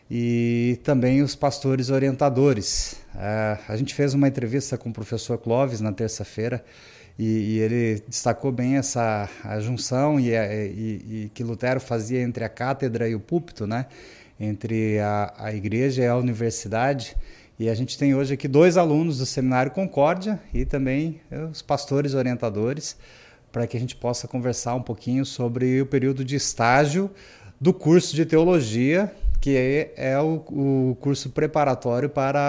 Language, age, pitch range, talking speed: Portuguese, 30-49, 115-140 Hz, 160 wpm